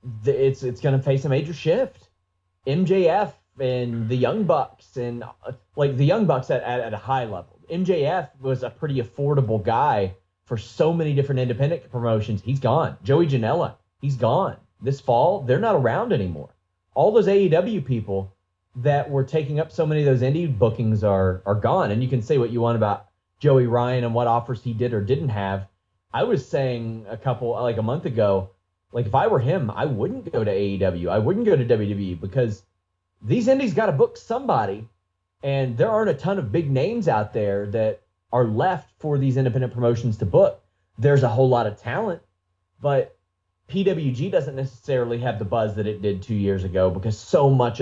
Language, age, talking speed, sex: English, 30-49, 195 wpm, male